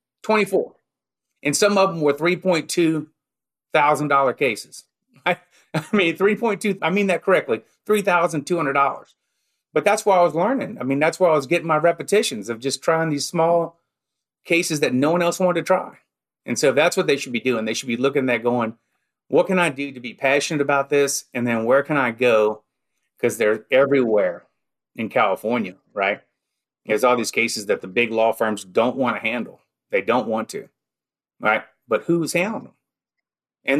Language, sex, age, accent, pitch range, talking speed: English, male, 30-49, American, 115-170 Hz, 200 wpm